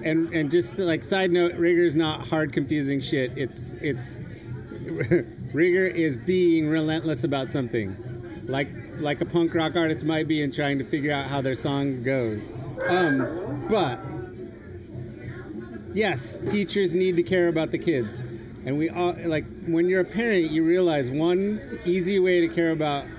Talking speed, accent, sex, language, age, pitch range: 165 wpm, American, male, English, 30-49, 130-170 Hz